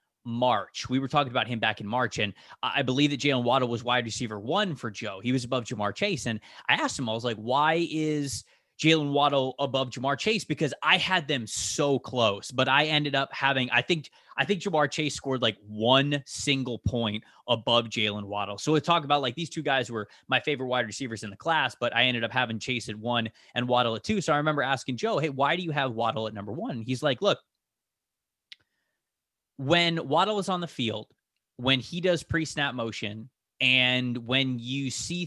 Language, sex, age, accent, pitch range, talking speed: English, male, 20-39, American, 120-155 Hz, 215 wpm